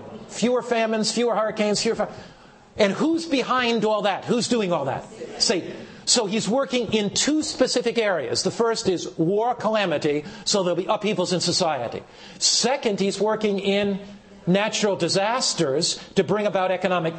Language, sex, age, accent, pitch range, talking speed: English, male, 50-69, American, 195-280 Hz, 155 wpm